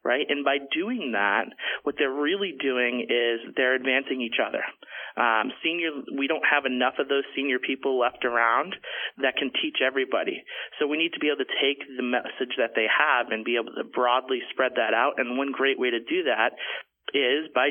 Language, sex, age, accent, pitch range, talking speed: English, male, 30-49, American, 120-140 Hz, 205 wpm